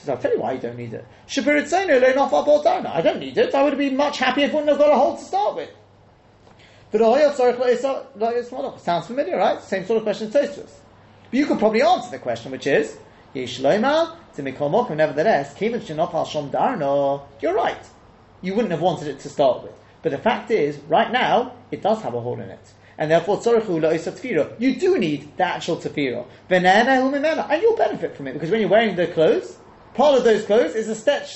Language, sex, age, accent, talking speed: English, male, 30-49, British, 195 wpm